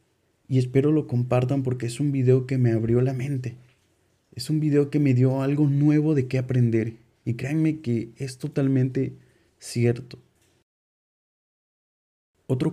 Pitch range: 120-145 Hz